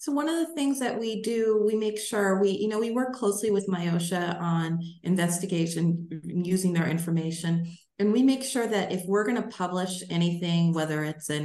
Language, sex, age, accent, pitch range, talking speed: English, female, 30-49, American, 165-205 Hz, 200 wpm